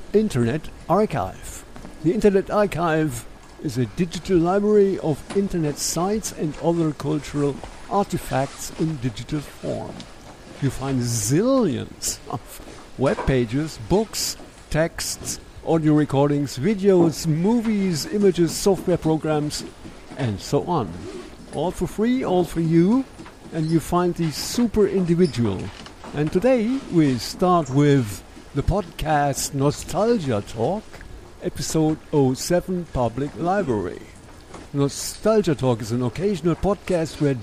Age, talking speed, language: 50-69, 110 wpm, English